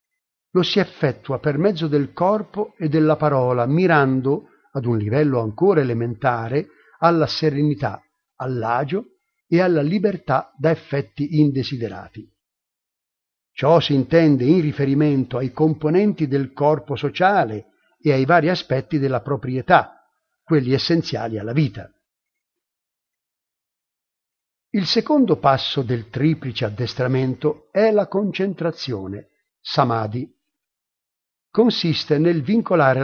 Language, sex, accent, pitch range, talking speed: Italian, male, native, 130-175 Hz, 105 wpm